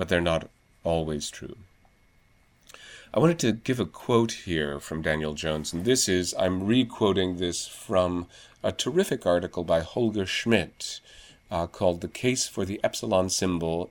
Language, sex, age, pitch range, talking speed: English, male, 40-59, 80-110 Hz, 160 wpm